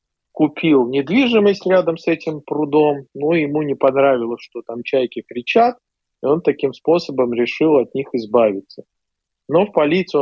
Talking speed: 145 wpm